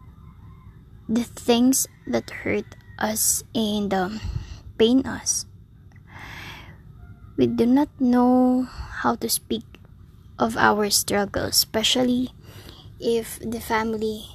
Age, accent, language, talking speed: 20-39, native, Filipino, 95 wpm